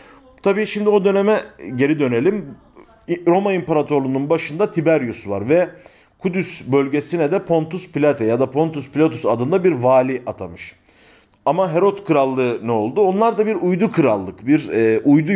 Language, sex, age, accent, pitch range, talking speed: Turkish, male, 40-59, native, 115-180 Hz, 145 wpm